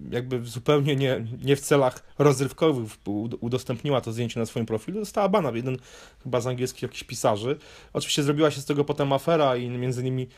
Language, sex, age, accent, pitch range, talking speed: Polish, male, 30-49, native, 115-135 Hz, 180 wpm